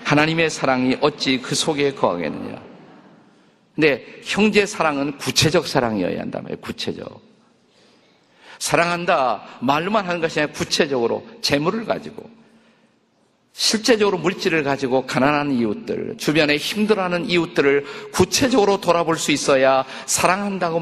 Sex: male